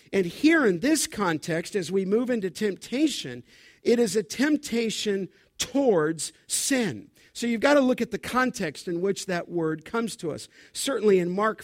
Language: English